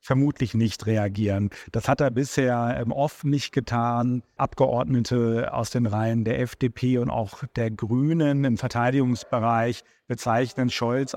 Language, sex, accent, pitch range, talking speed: German, male, German, 115-135 Hz, 135 wpm